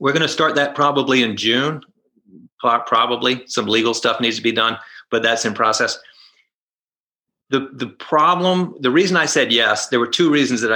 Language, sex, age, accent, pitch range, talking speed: English, male, 40-59, American, 115-155 Hz, 185 wpm